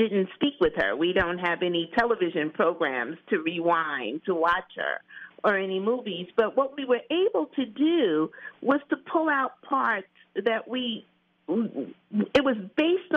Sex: female